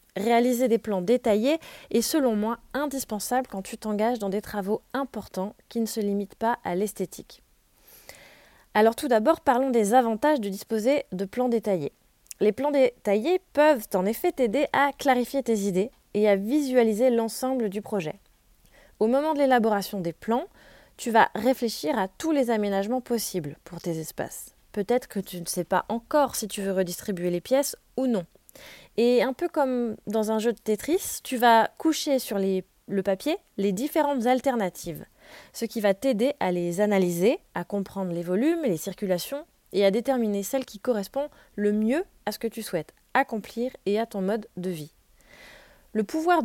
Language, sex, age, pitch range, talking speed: French, female, 20-39, 200-260 Hz, 175 wpm